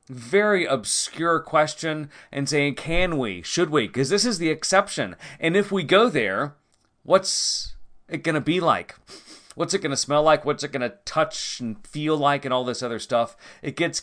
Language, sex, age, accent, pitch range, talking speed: English, male, 30-49, American, 110-155 Hz, 195 wpm